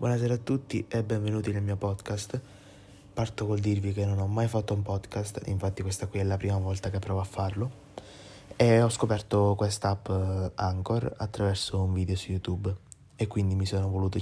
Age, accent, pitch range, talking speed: 20-39, native, 95-110 Hz, 185 wpm